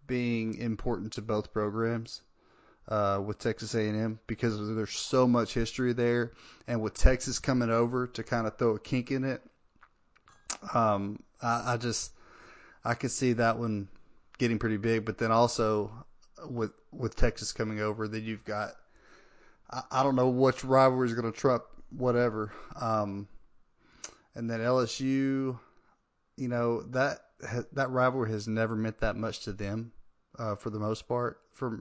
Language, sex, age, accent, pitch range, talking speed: English, male, 20-39, American, 110-130 Hz, 160 wpm